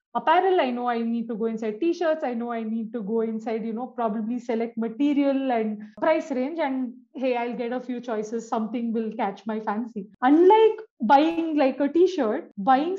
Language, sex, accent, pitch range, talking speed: English, female, Indian, 230-290 Hz, 195 wpm